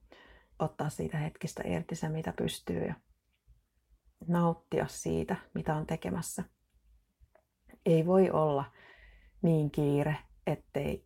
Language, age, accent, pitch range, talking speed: Finnish, 30-49, native, 120-180 Hz, 105 wpm